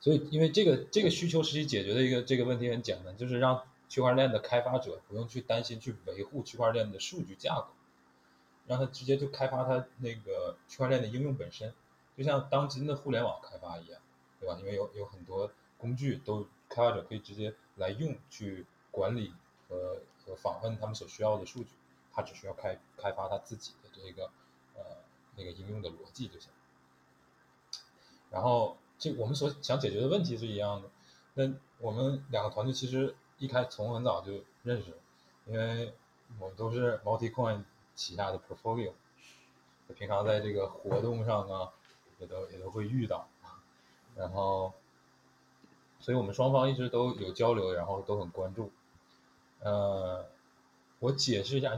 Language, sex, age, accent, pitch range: Chinese, male, 20-39, native, 95-130 Hz